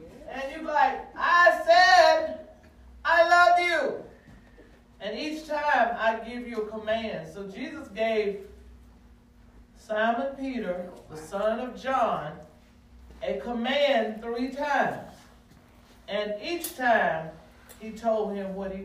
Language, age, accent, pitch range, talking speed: English, 40-59, American, 195-255 Hz, 120 wpm